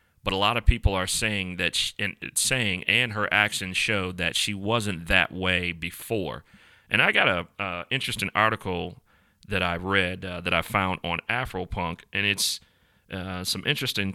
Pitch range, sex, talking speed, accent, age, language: 90-110 Hz, male, 180 wpm, American, 40-59, English